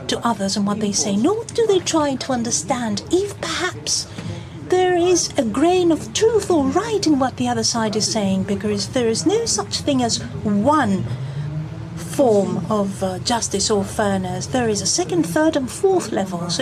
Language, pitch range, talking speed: Greek, 190-315 Hz, 190 wpm